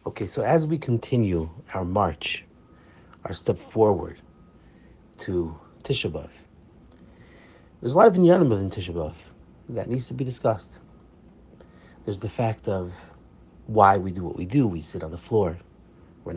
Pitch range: 85-125 Hz